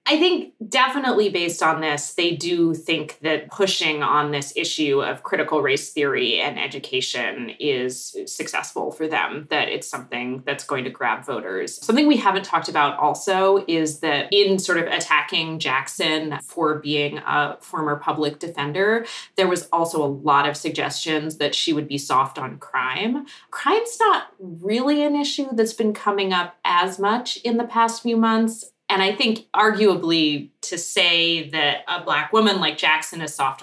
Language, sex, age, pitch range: English, female, 20-39, 150-195 Hz